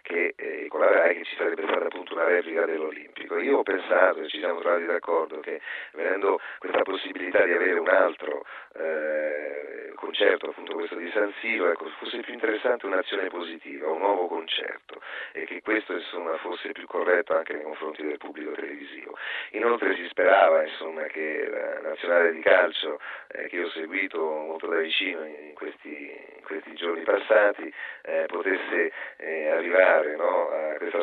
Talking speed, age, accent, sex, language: 165 wpm, 40-59, native, male, Italian